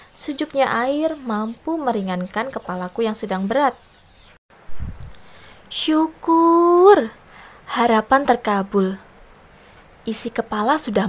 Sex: female